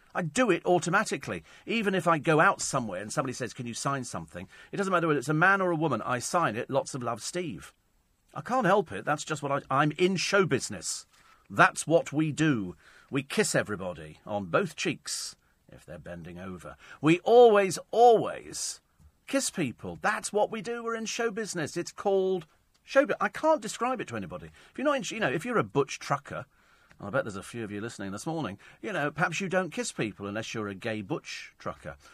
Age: 40-59